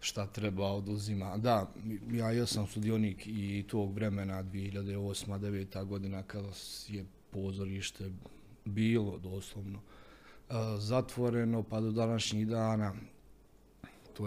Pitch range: 100-110 Hz